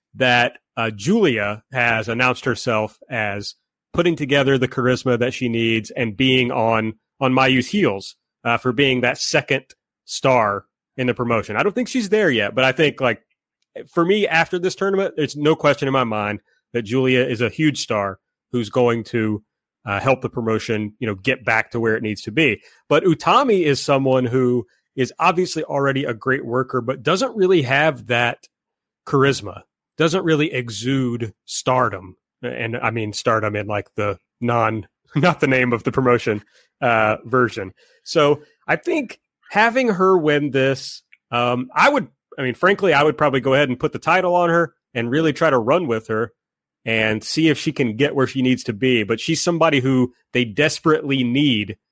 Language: English